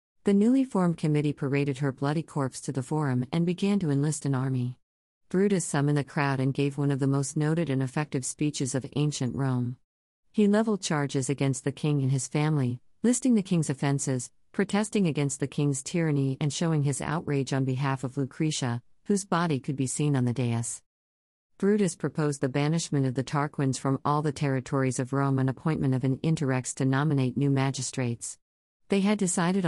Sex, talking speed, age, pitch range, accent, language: female, 190 wpm, 50-69, 135-160 Hz, American, English